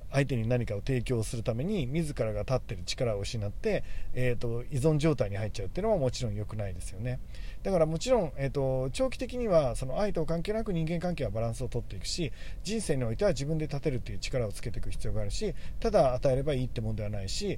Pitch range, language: 115-155 Hz, Japanese